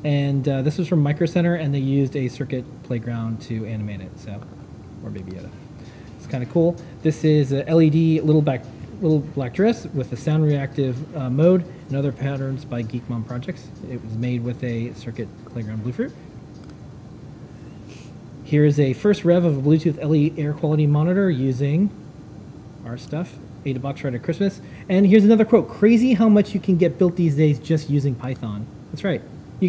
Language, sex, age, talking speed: English, male, 30-49, 190 wpm